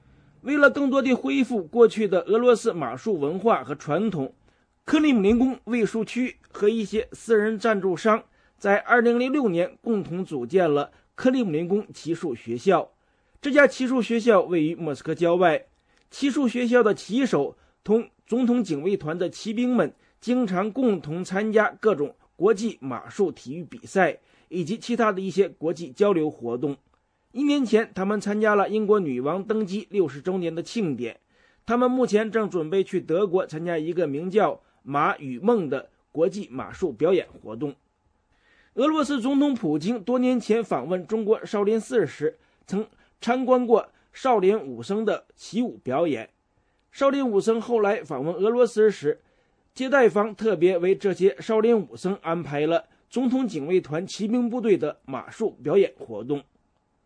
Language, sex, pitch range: English, male, 180-240 Hz